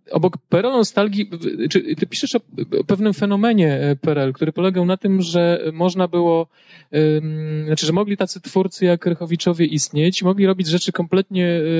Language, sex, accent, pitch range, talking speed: Polish, male, native, 150-170 Hz, 145 wpm